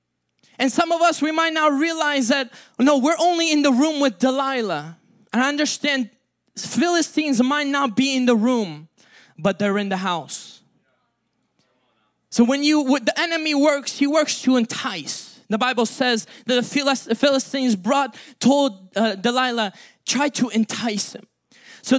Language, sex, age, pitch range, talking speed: English, male, 20-39, 245-310 Hz, 155 wpm